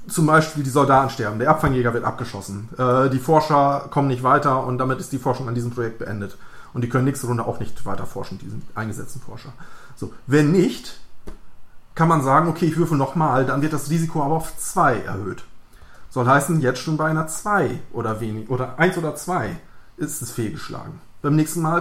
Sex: male